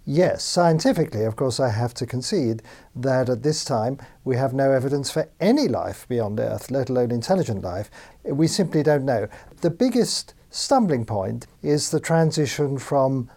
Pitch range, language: 125-155 Hz, English